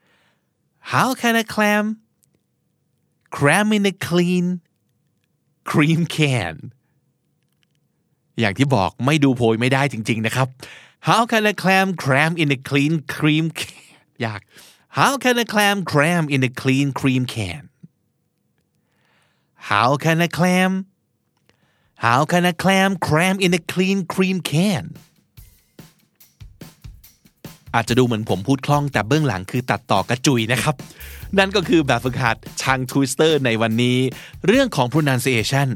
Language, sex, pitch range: Thai, male, 120-165 Hz